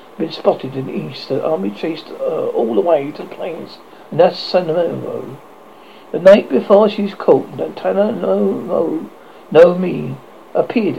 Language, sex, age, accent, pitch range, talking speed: English, male, 60-79, British, 170-225 Hz, 160 wpm